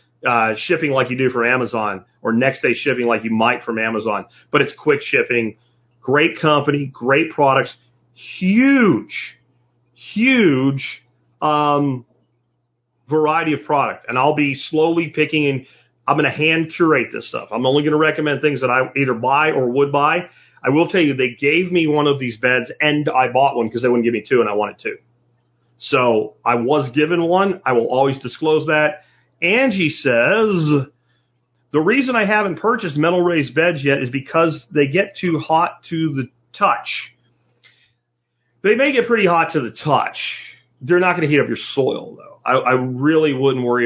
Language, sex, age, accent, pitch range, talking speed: English, male, 40-59, American, 120-155 Hz, 180 wpm